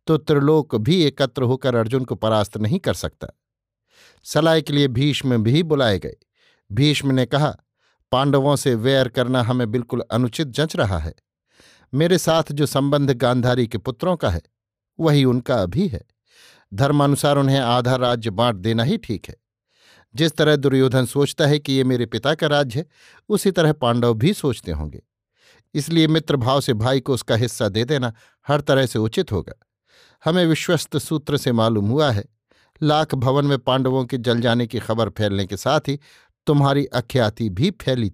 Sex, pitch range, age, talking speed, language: male, 115-150 Hz, 50-69, 170 wpm, Hindi